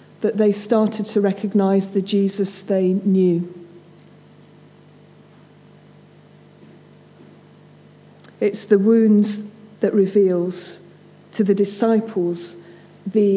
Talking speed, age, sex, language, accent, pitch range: 80 wpm, 40-59, female, English, British, 185-215 Hz